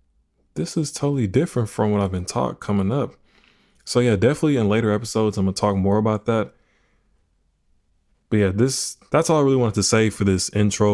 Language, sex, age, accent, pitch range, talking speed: English, male, 20-39, American, 105-140 Hz, 205 wpm